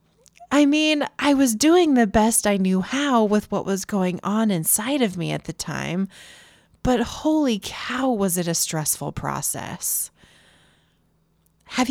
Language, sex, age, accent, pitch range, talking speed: English, female, 20-39, American, 175-240 Hz, 150 wpm